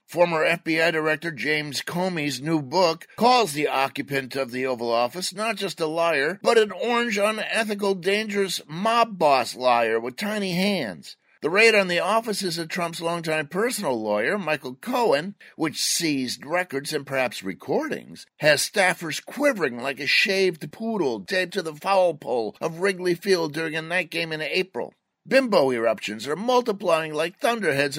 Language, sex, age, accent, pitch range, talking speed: English, male, 50-69, American, 145-200 Hz, 160 wpm